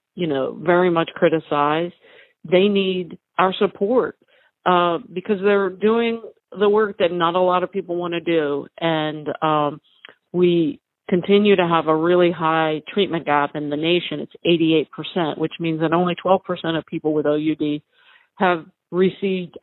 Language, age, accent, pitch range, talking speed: English, 50-69, American, 160-195 Hz, 155 wpm